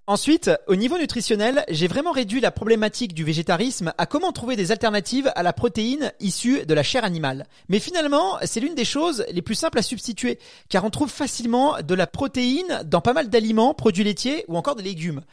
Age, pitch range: 30-49, 200-280 Hz